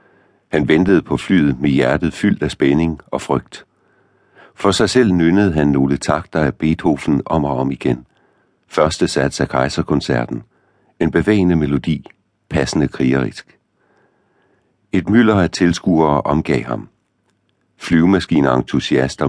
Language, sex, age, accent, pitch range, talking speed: Danish, male, 60-79, native, 70-90 Hz, 125 wpm